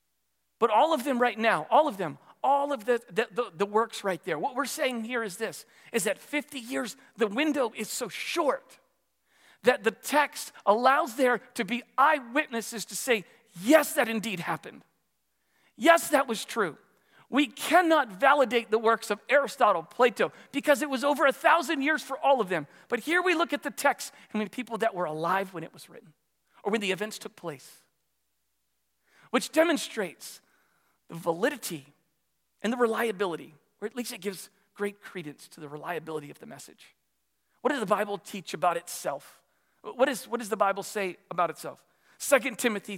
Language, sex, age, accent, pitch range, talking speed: English, male, 40-59, American, 190-270 Hz, 185 wpm